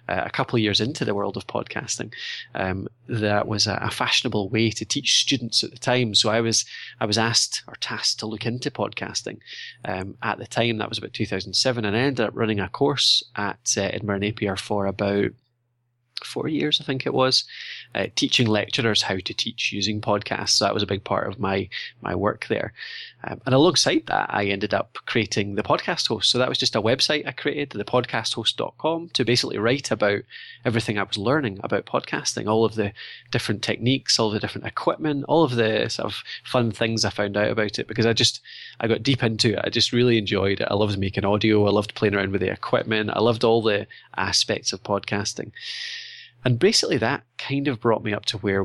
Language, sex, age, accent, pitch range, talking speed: English, male, 20-39, British, 105-125 Hz, 215 wpm